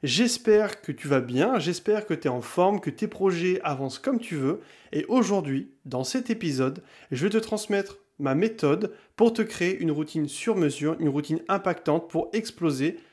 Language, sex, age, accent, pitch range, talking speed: French, male, 30-49, French, 145-200 Hz, 185 wpm